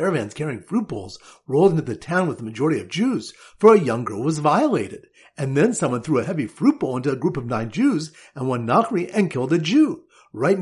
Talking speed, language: 230 wpm, English